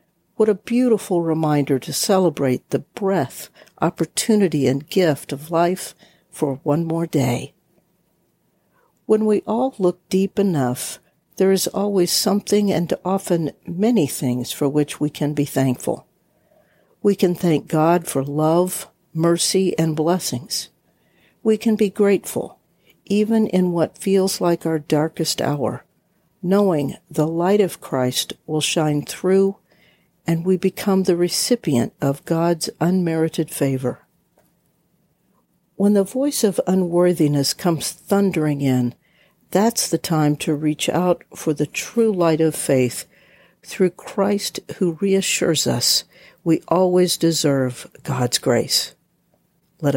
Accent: American